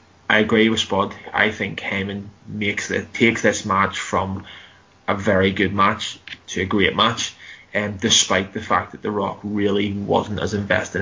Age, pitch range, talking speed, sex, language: 10-29, 100-110 Hz, 175 wpm, male, English